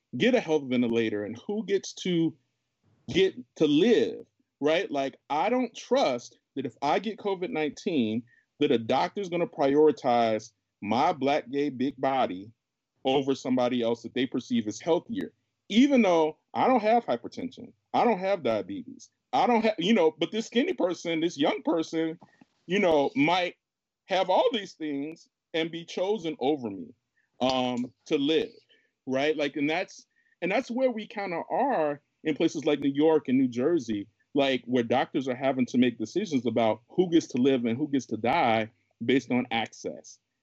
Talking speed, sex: 175 wpm, male